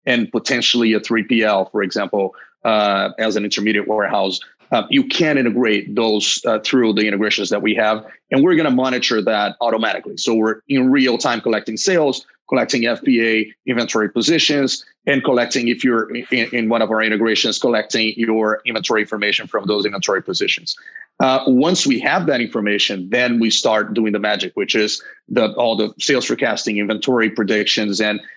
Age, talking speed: 30-49, 170 wpm